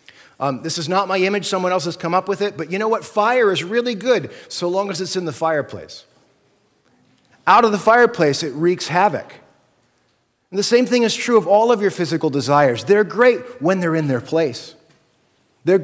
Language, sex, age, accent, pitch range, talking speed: English, male, 30-49, American, 140-195 Hz, 210 wpm